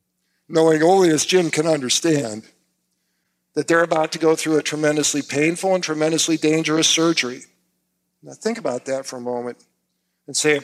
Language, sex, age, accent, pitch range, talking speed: English, male, 50-69, American, 145-210 Hz, 165 wpm